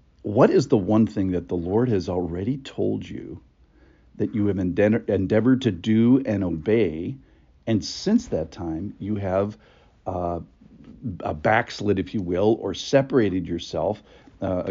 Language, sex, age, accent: English, male, 50-69, American